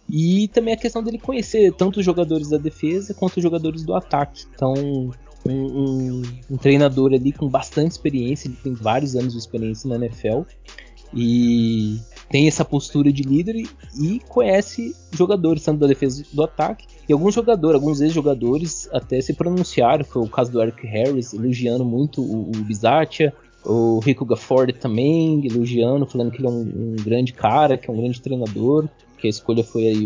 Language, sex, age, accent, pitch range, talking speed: Portuguese, male, 20-39, Brazilian, 125-165 Hz, 180 wpm